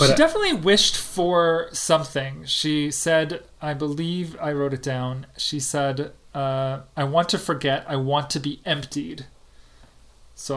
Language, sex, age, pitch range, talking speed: English, male, 30-49, 125-150 Hz, 150 wpm